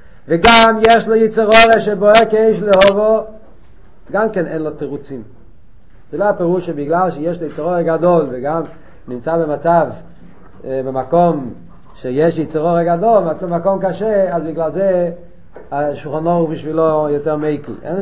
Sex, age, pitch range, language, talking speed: male, 40-59, 170-225 Hz, Hebrew, 125 wpm